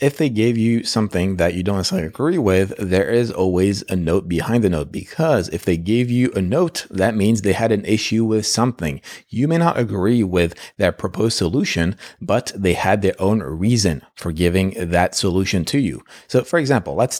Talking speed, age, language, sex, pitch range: 200 wpm, 30-49, English, male, 90-120 Hz